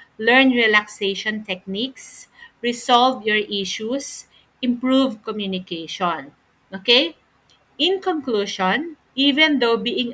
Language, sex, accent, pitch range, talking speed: Filipino, female, native, 195-255 Hz, 85 wpm